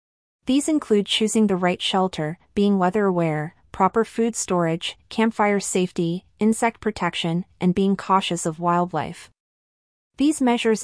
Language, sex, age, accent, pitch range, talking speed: English, female, 30-49, American, 170-210 Hz, 125 wpm